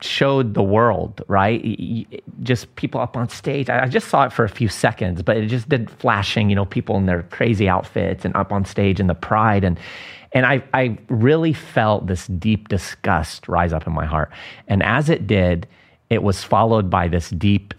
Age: 30-49